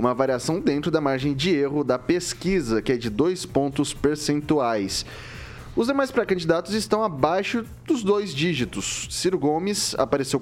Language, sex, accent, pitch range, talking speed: Portuguese, male, Brazilian, 125-165 Hz, 150 wpm